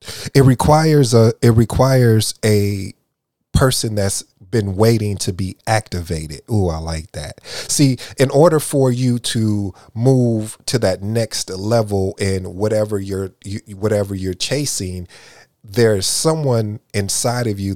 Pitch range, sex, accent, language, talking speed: 100-130 Hz, male, American, English, 135 wpm